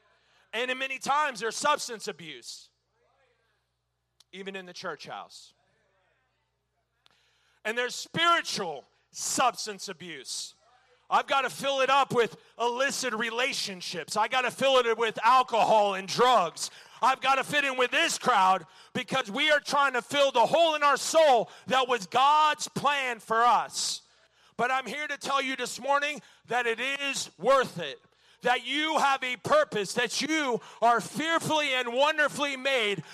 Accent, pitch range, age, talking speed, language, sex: American, 220-285 Hz, 40-59, 155 wpm, English, male